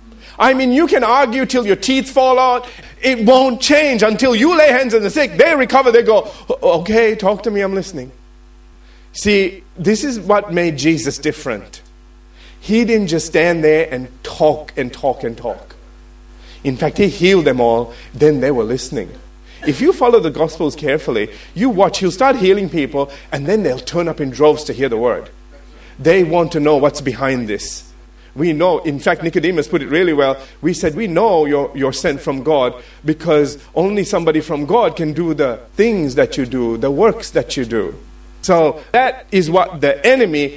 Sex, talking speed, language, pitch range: male, 190 wpm, English, 140-200 Hz